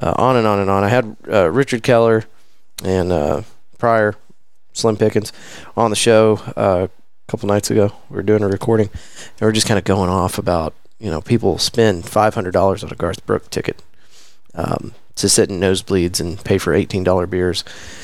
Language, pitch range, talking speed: English, 95-115 Hz, 195 wpm